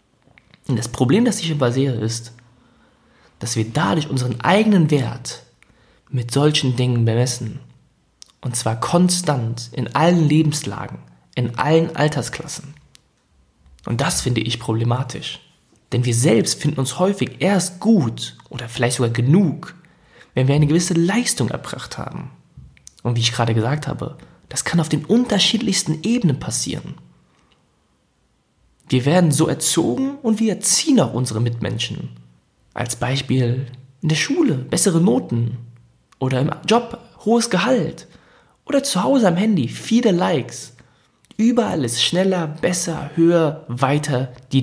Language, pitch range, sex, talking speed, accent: German, 120-180 Hz, male, 130 wpm, German